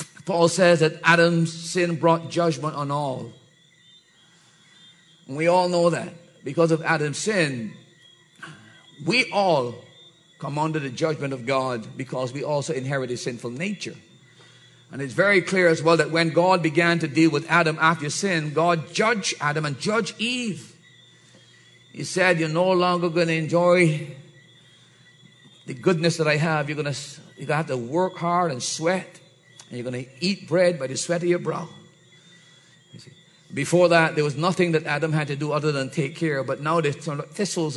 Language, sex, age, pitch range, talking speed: English, male, 50-69, 150-180 Hz, 170 wpm